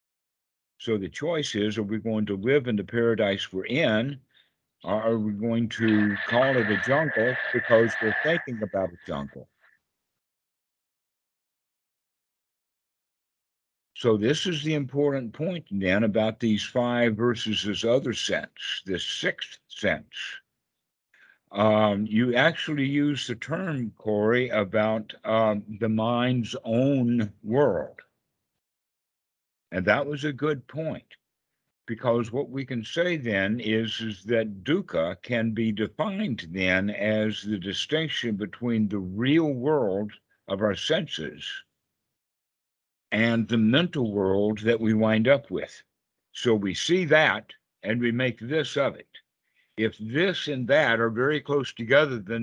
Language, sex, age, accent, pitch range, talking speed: English, male, 50-69, American, 110-135 Hz, 135 wpm